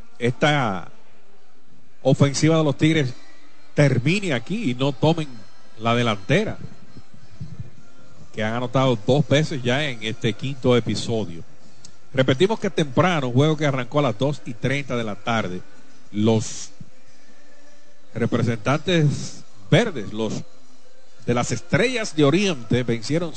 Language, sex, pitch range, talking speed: Spanish, male, 110-145 Hz, 120 wpm